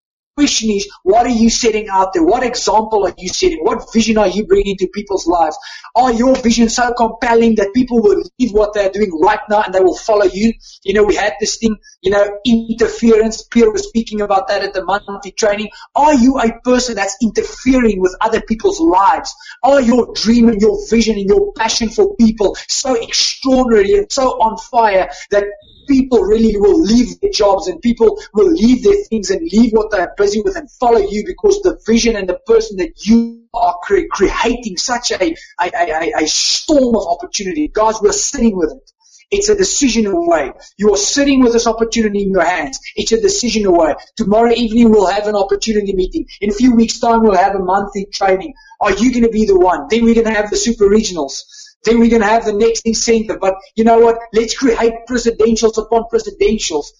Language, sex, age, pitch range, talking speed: English, male, 20-39, 205-245 Hz, 205 wpm